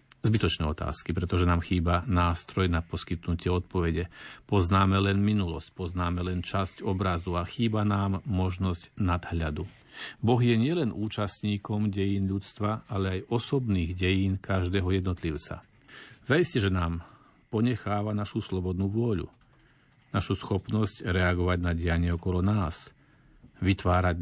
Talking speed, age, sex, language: 120 wpm, 50-69, male, Slovak